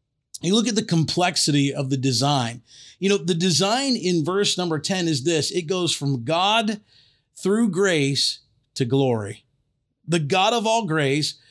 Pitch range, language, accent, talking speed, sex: 135-180 Hz, English, American, 160 wpm, male